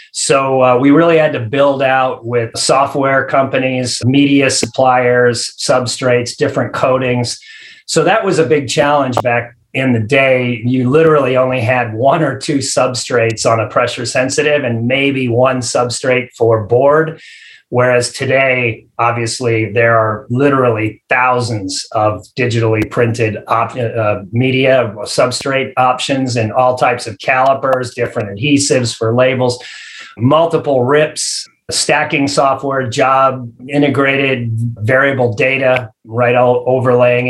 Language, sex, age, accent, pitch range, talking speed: English, male, 30-49, American, 120-140 Hz, 125 wpm